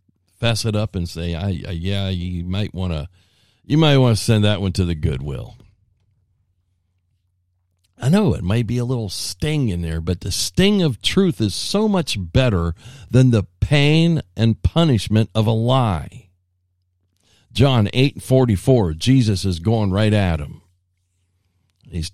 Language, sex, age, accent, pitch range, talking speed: English, male, 50-69, American, 90-130 Hz, 150 wpm